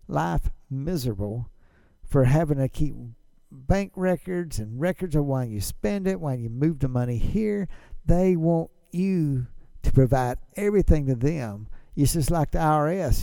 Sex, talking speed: male, 155 wpm